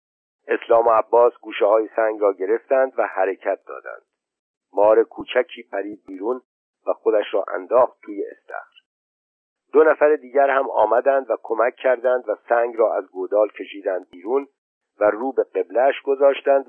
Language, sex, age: Persian, male, 50-69